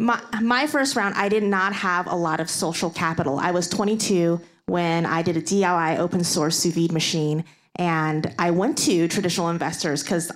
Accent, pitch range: American, 175-220 Hz